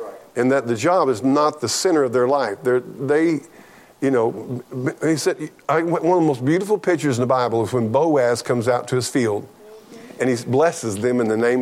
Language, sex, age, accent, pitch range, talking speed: English, male, 50-69, American, 125-155 Hz, 210 wpm